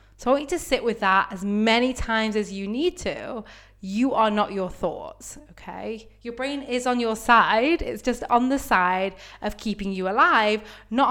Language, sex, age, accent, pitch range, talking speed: English, female, 20-39, British, 190-250 Hz, 200 wpm